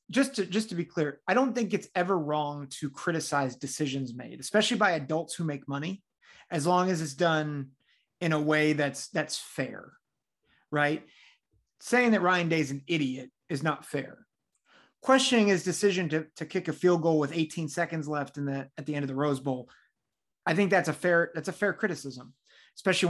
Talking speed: 195 wpm